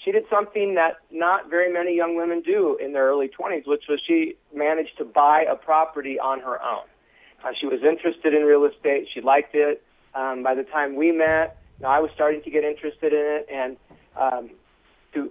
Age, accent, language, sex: 40-59, American, English, male